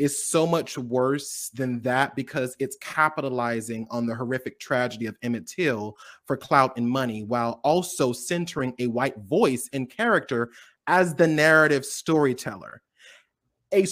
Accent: American